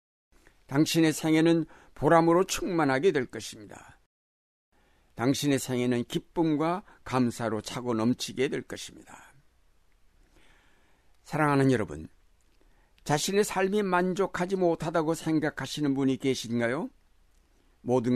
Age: 60-79